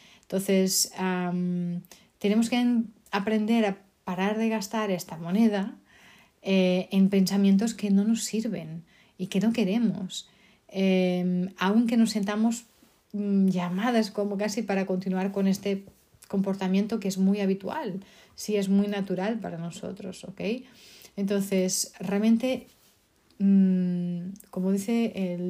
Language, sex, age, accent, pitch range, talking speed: Spanish, female, 30-49, Spanish, 180-205 Hz, 125 wpm